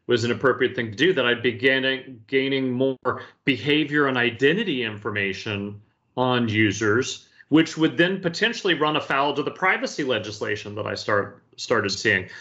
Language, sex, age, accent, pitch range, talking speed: English, male, 30-49, American, 120-155 Hz, 155 wpm